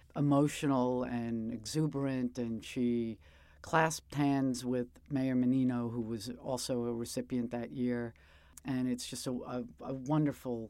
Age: 50-69